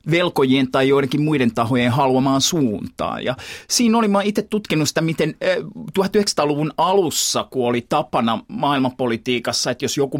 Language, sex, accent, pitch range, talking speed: Finnish, male, native, 115-160 Hz, 135 wpm